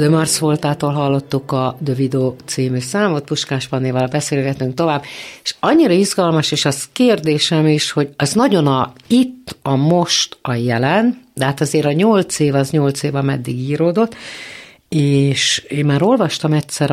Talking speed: 145 wpm